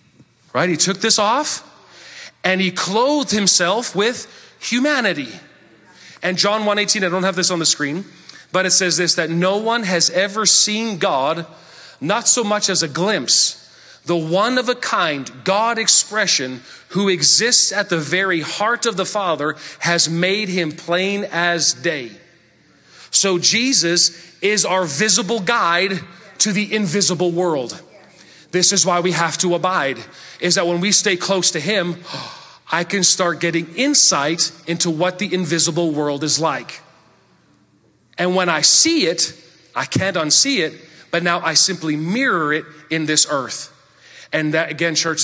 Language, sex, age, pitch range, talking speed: English, male, 40-59, 165-200 Hz, 160 wpm